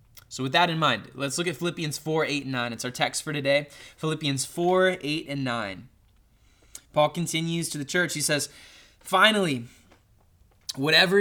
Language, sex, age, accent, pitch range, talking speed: English, male, 20-39, American, 115-160 Hz, 170 wpm